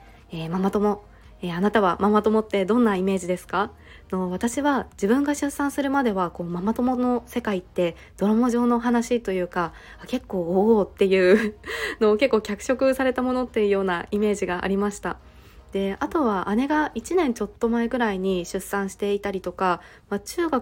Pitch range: 185-240 Hz